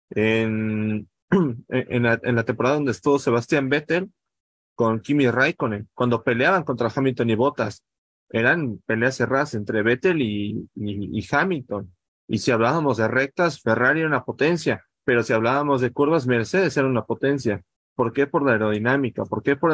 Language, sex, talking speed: Spanish, male, 165 wpm